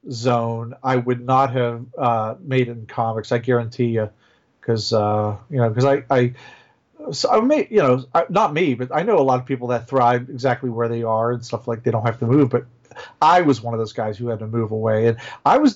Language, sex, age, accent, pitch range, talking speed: English, male, 40-59, American, 120-150 Hz, 240 wpm